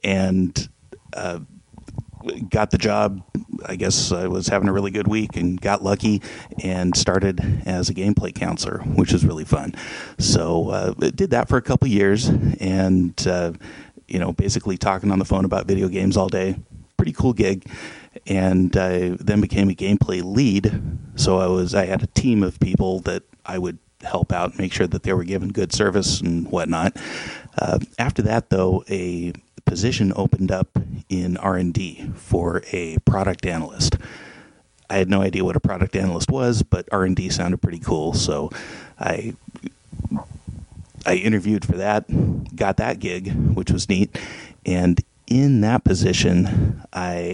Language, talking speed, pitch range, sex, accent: English, 165 wpm, 90-105 Hz, male, American